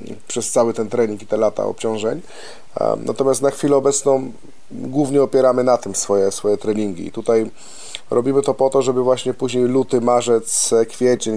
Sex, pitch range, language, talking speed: male, 110-125 Hz, Polish, 165 wpm